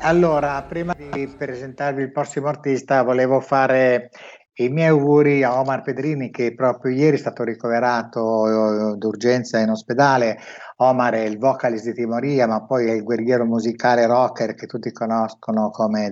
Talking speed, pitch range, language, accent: 155 wpm, 115-135 Hz, Italian, native